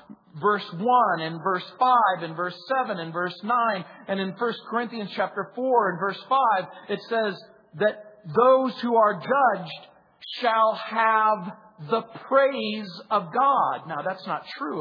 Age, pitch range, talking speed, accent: 50-69, 180-230 Hz, 150 wpm, American